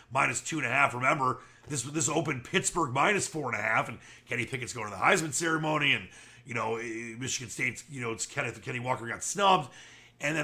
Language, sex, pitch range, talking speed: English, male, 115-145 Hz, 225 wpm